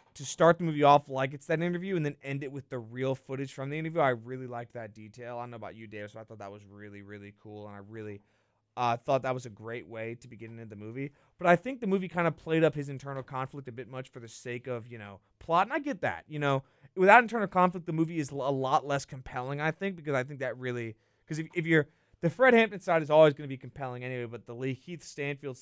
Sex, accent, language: male, American, English